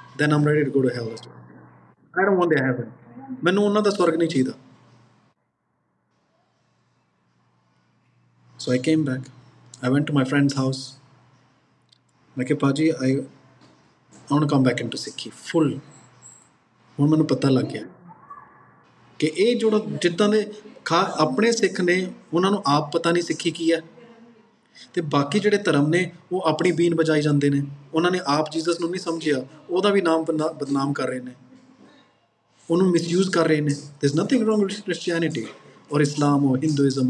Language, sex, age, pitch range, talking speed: Punjabi, male, 20-39, 135-185 Hz, 155 wpm